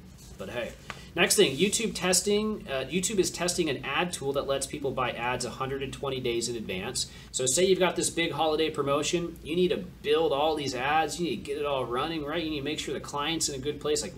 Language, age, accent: English, 30-49, American